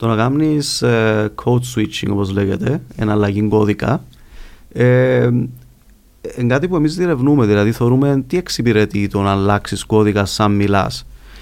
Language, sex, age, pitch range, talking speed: Greek, male, 30-49, 105-125 Hz, 125 wpm